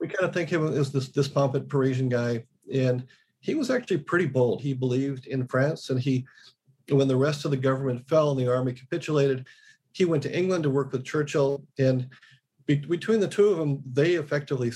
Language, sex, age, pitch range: English, male, 40-59, 125-145 Hz